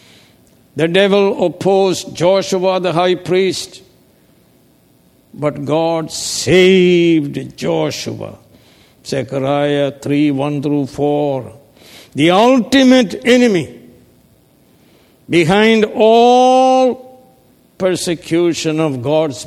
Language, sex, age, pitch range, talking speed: English, male, 60-79, 140-190 Hz, 75 wpm